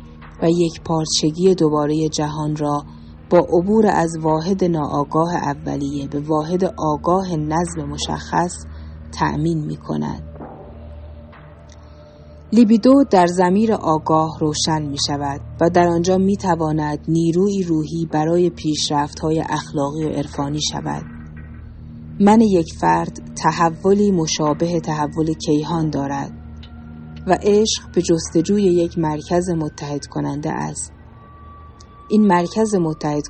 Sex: female